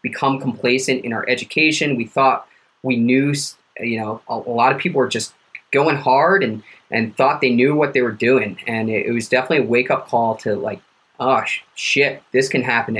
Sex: male